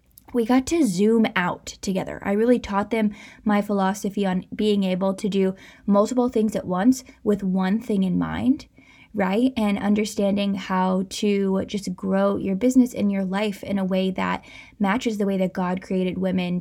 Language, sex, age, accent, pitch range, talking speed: English, female, 10-29, American, 190-225 Hz, 175 wpm